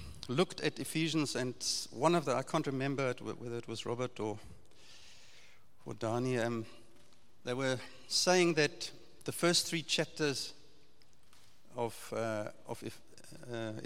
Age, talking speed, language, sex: 60-79, 135 wpm, English, male